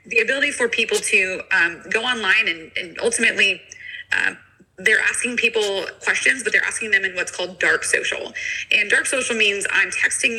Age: 20-39